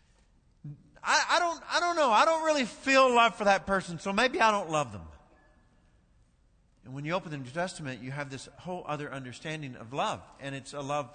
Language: English